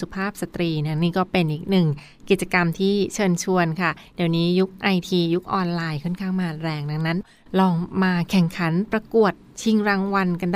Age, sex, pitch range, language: 20-39, female, 175-210 Hz, Thai